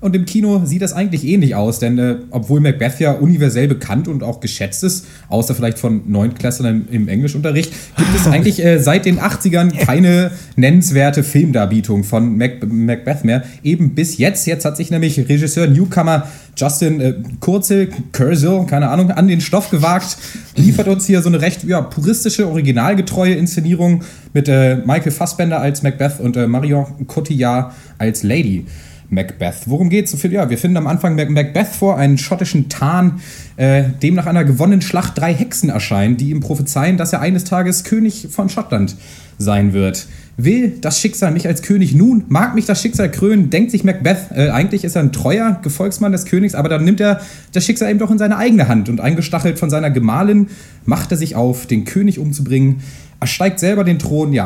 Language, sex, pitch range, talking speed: German, male, 130-185 Hz, 185 wpm